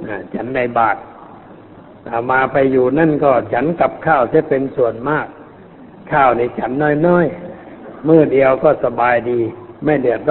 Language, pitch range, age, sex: Thai, 120-145 Hz, 60-79, male